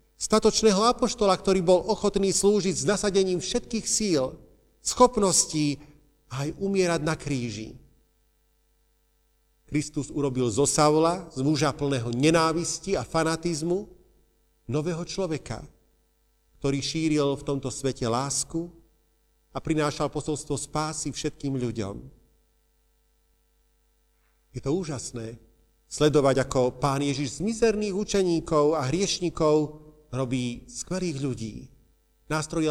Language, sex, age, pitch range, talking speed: Slovak, male, 40-59, 115-160 Hz, 105 wpm